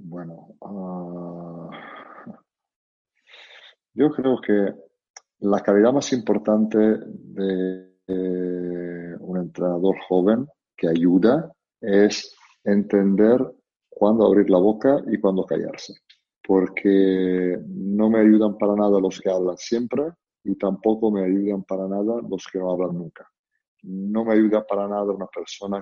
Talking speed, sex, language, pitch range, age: 120 wpm, male, Spanish, 90-100 Hz, 50-69